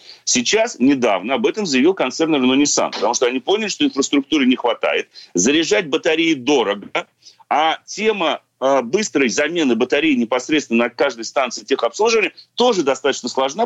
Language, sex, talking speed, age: Russian, male, 145 wpm, 40-59